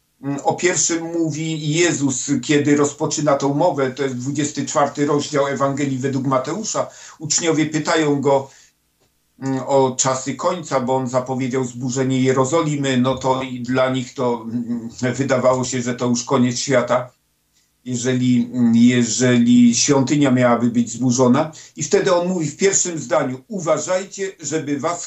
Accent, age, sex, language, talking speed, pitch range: native, 50-69, male, Polish, 130 wpm, 130-170 Hz